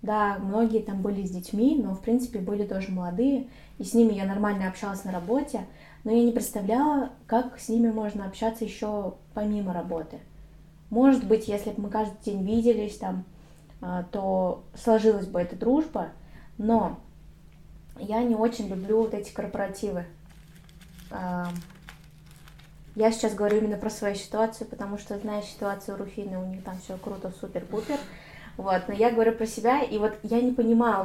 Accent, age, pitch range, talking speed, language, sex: native, 20-39, 195-230 Hz, 165 wpm, Russian, female